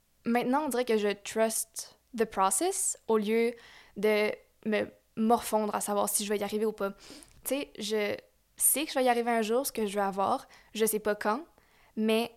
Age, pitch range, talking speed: 10-29, 215-245 Hz, 210 wpm